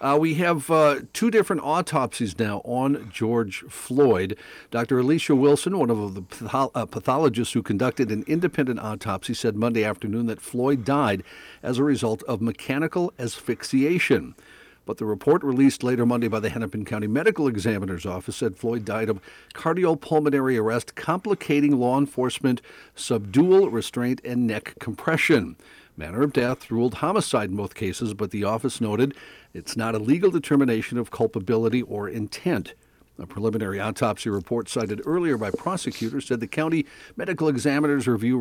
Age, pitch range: 50-69, 105-135 Hz